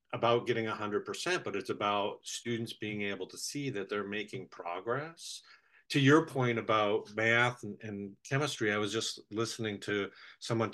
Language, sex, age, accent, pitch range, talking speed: English, male, 50-69, American, 100-125 Hz, 155 wpm